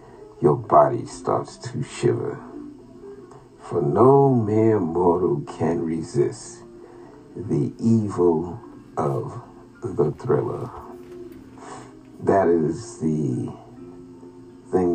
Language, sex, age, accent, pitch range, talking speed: English, male, 50-69, American, 85-120 Hz, 80 wpm